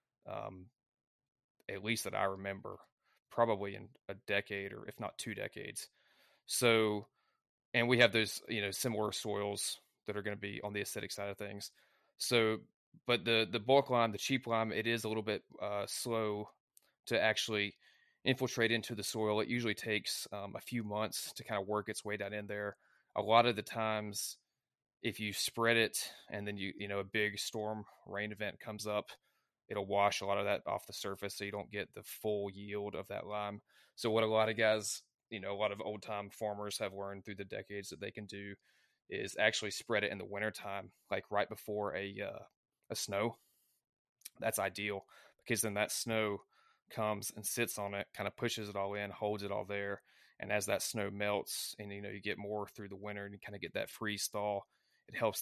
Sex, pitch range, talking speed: male, 100-110 Hz, 210 wpm